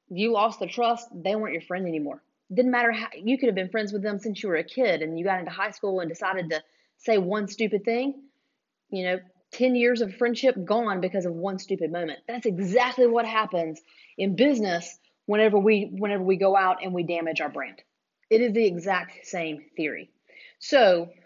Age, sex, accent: 30-49, female, American